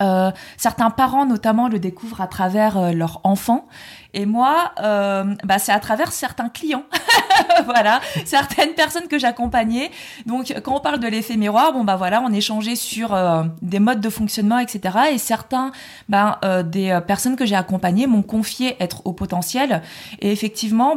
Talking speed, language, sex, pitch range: 170 wpm, French, female, 195-245 Hz